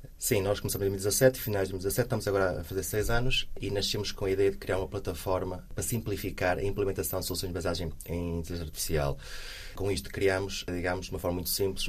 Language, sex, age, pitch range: Portuguese, male, 20-39, 85-100 Hz